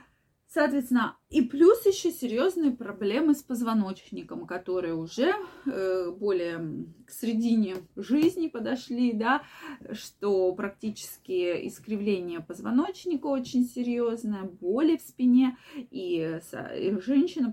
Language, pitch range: Russian, 190-255 Hz